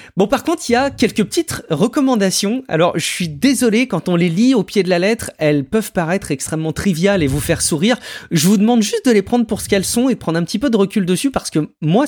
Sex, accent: male, French